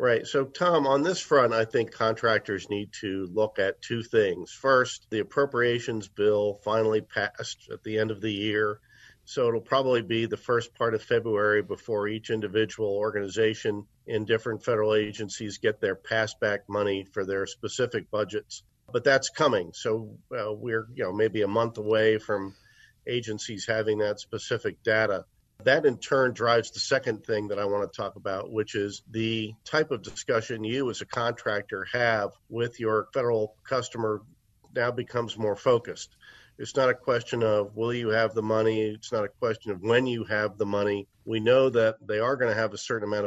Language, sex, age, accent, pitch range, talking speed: English, male, 50-69, American, 105-120 Hz, 185 wpm